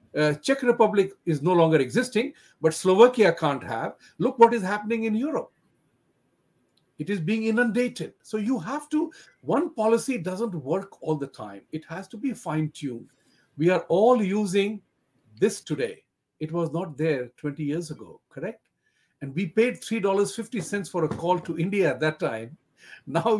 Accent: Indian